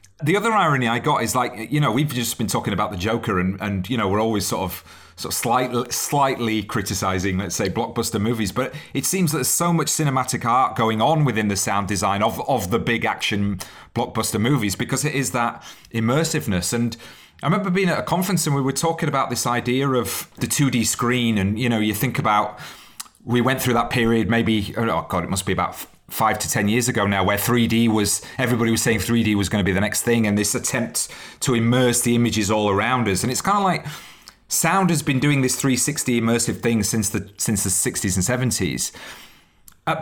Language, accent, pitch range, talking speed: English, British, 110-140 Hz, 220 wpm